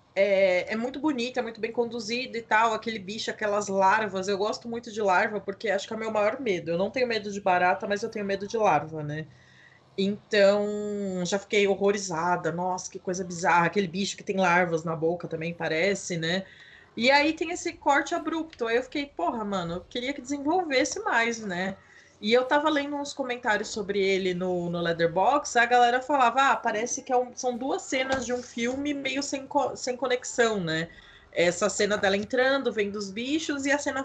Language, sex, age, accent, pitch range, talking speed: Portuguese, female, 20-39, Brazilian, 190-250 Hz, 200 wpm